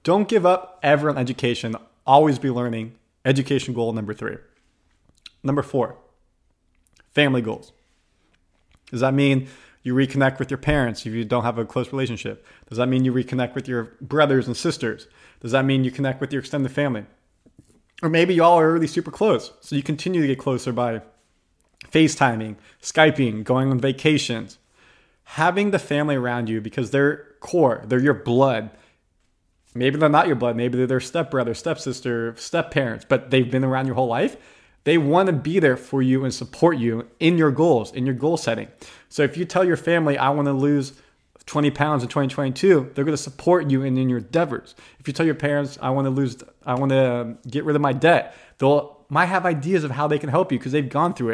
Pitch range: 120-150 Hz